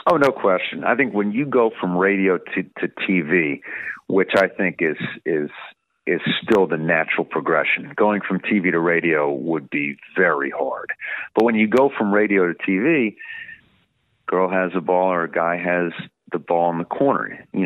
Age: 40-59